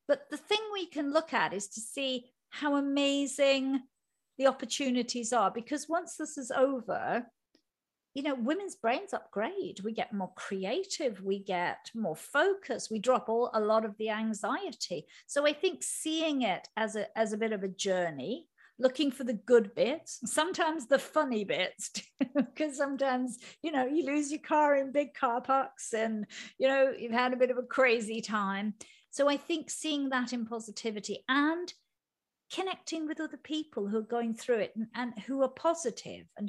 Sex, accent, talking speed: female, British, 180 wpm